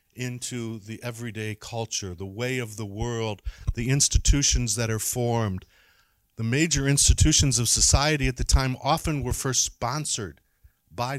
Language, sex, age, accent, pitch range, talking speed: English, male, 50-69, American, 100-140 Hz, 145 wpm